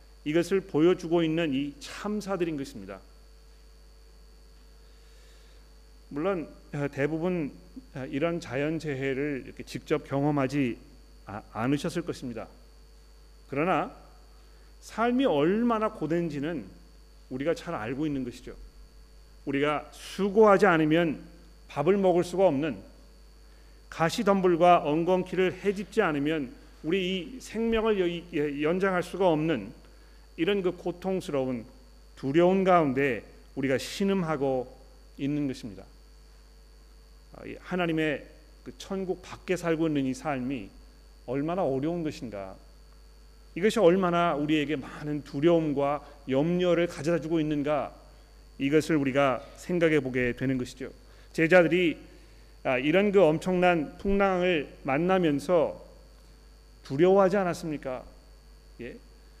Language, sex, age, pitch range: Korean, male, 40-59, 130-180 Hz